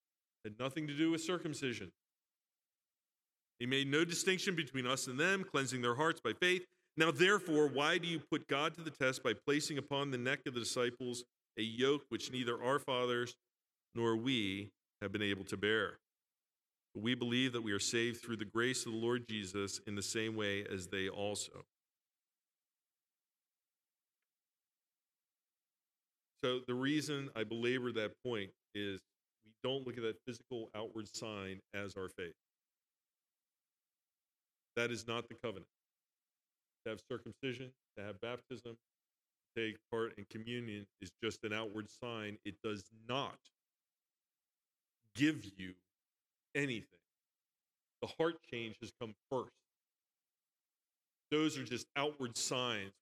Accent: American